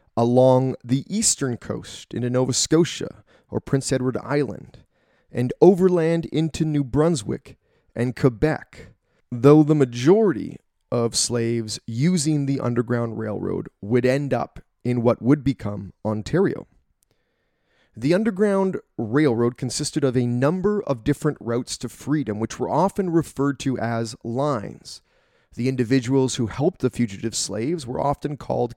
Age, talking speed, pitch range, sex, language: 30-49, 135 wpm, 120-150 Hz, male, English